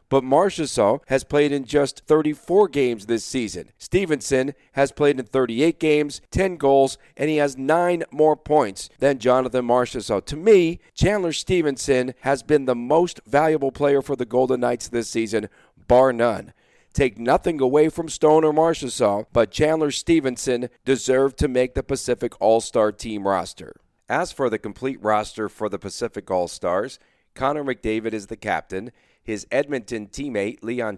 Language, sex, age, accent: English, male, 40-59, American